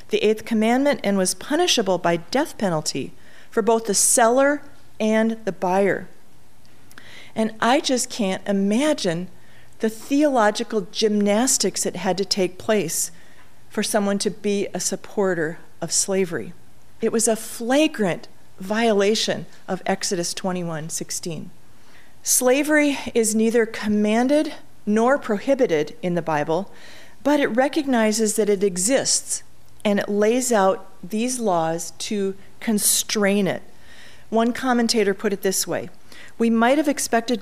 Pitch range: 190-245 Hz